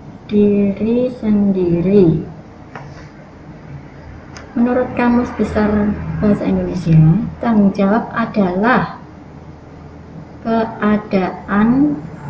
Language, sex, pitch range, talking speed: Indonesian, female, 185-235 Hz, 55 wpm